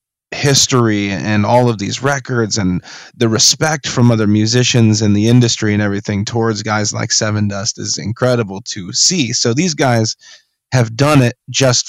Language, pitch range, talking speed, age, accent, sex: English, 105-125 Hz, 165 wpm, 30-49, American, male